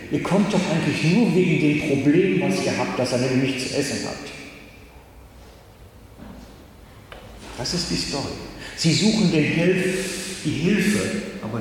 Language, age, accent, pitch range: German, 60-79, German, 115-165 Hz